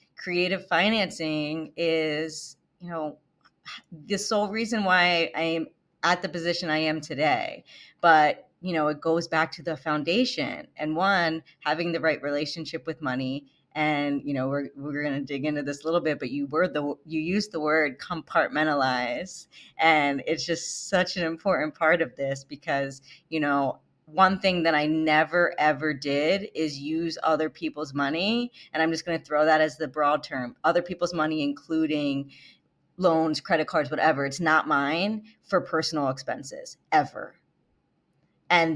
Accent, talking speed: American, 165 wpm